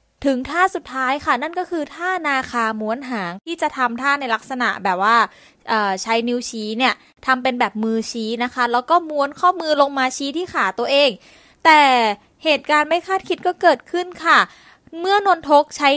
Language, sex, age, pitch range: Thai, female, 20-39, 230-305 Hz